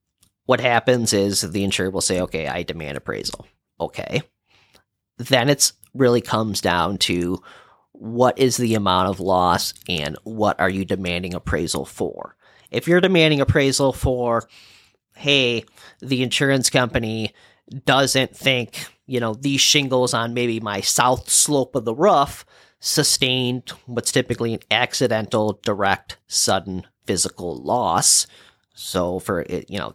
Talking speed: 135 wpm